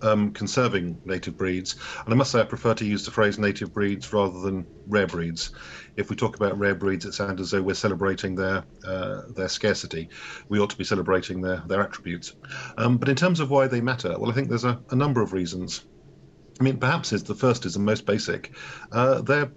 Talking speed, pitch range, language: 220 wpm, 100-120 Hz, English